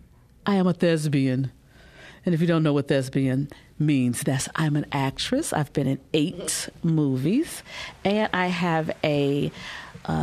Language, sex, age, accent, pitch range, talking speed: English, female, 40-59, American, 145-200 Hz, 155 wpm